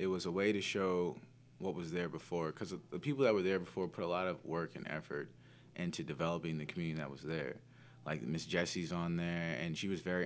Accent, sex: American, male